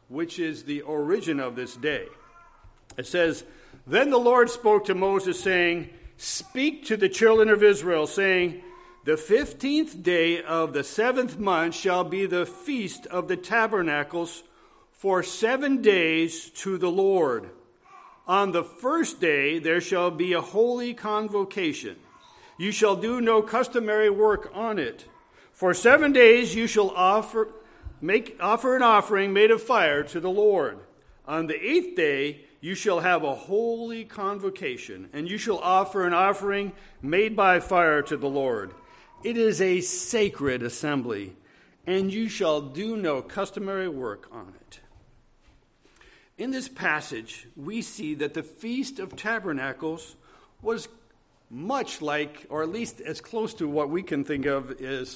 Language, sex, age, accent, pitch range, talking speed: English, male, 50-69, American, 165-230 Hz, 150 wpm